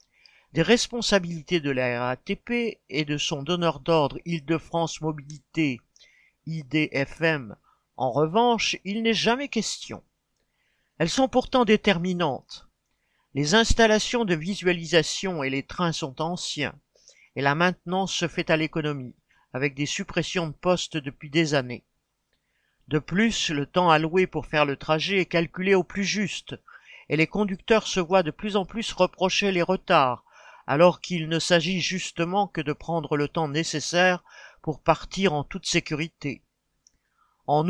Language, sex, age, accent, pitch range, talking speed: French, male, 50-69, French, 155-195 Hz, 145 wpm